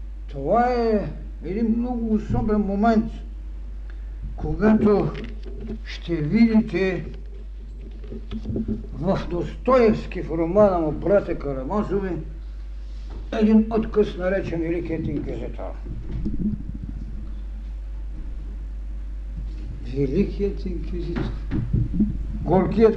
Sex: male